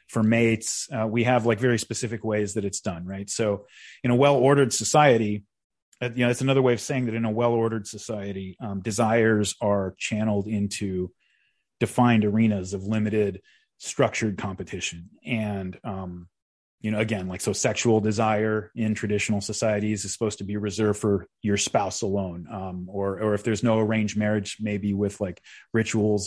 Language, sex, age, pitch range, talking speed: English, male, 30-49, 100-120 Hz, 170 wpm